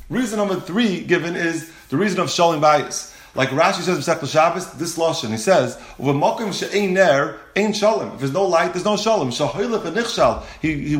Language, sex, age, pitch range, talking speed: English, male, 30-49, 150-200 Hz, 160 wpm